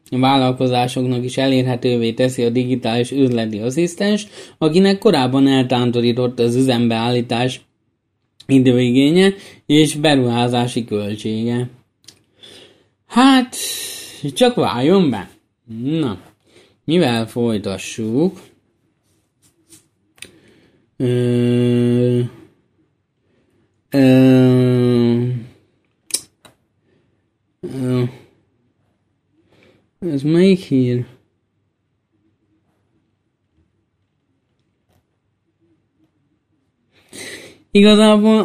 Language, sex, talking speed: Hungarian, male, 50 wpm